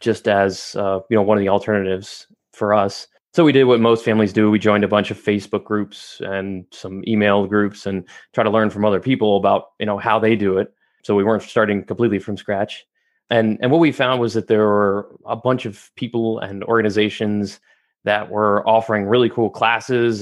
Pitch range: 105-120 Hz